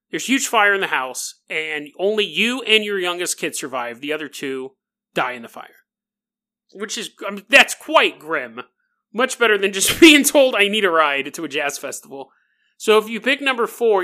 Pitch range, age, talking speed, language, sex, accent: 170-250 Hz, 30-49, 195 wpm, English, male, American